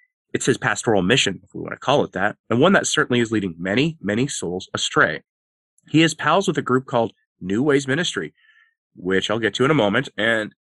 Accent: American